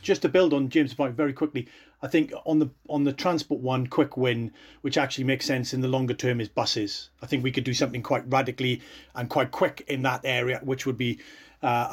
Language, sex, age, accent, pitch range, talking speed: English, male, 40-59, British, 130-155 Hz, 230 wpm